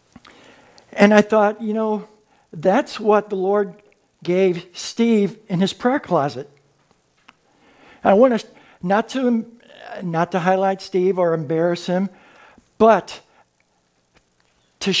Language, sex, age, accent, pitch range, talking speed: English, male, 60-79, American, 190-250 Hz, 110 wpm